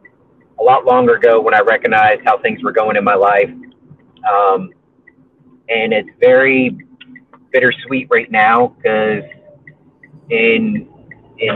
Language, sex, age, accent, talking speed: English, male, 40-59, American, 125 wpm